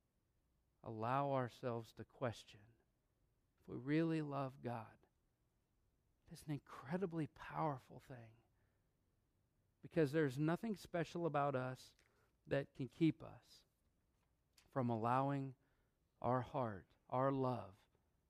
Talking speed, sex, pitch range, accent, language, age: 100 wpm, male, 110-135 Hz, American, English, 50-69